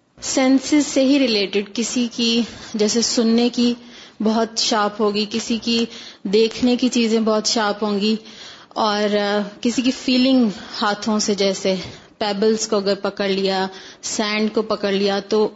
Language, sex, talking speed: Urdu, female, 150 wpm